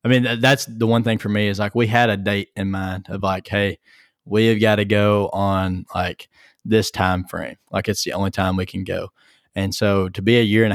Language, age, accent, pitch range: English, 20-39, American, 95-110 Hz